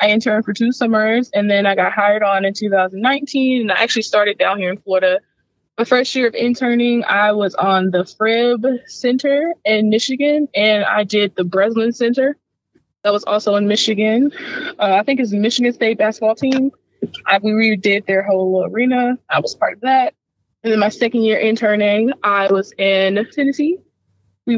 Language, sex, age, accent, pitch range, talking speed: English, female, 20-39, American, 200-255 Hz, 180 wpm